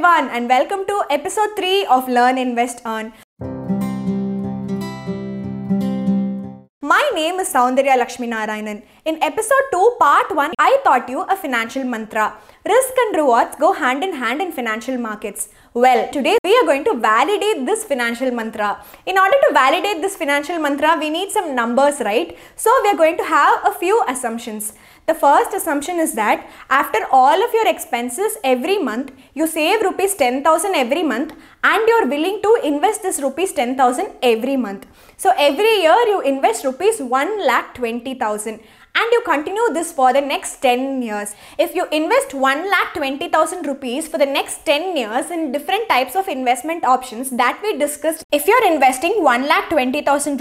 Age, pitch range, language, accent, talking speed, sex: 20-39, 250-370 Hz, English, Indian, 160 wpm, female